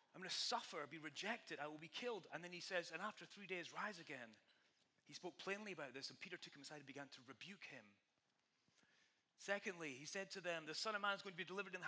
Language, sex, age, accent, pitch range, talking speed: English, male, 30-49, British, 140-190 Hz, 260 wpm